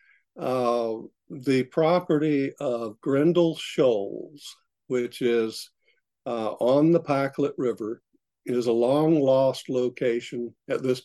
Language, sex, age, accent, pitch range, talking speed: English, male, 50-69, American, 120-155 Hz, 110 wpm